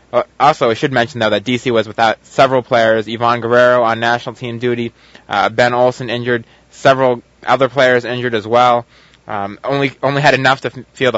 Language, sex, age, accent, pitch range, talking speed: English, male, 20-39, American, 110-130 Hz, 185 wpm